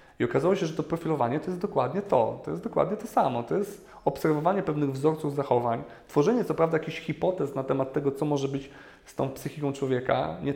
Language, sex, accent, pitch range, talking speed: Polish, male, native, 135-165 Hz, 210 wpm